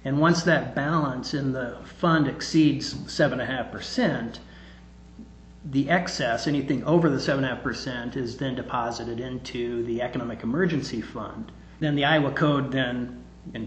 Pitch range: 125-155 Hz